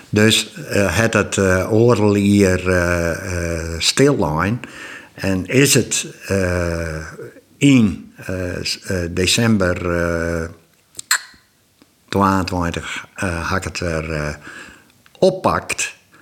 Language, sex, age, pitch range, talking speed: Dutch, male, 60-79, 90-110 Hz, 100 wpm